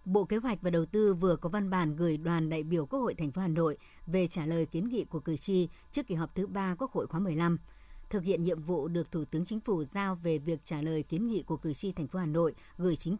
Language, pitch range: Vietnamese, 165-205 Hz